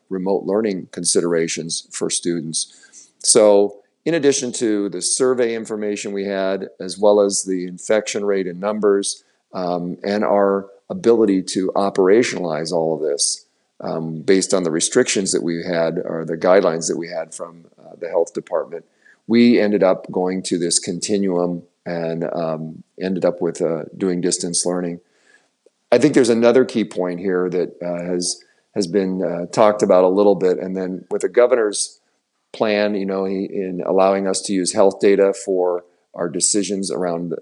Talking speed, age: 165 wpm, 40-59